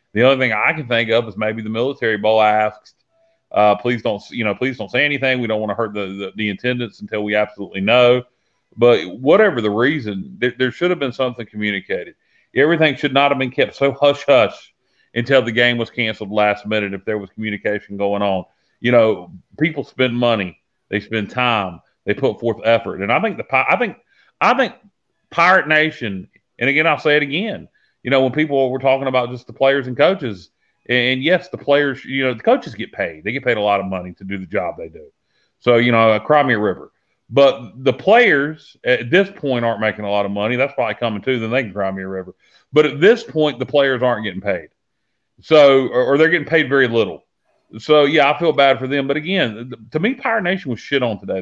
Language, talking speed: English, 230 wpm